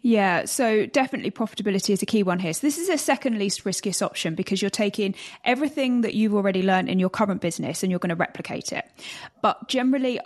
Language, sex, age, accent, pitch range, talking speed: English, female, 20-39, British, 180-210 Hz, 215 wpm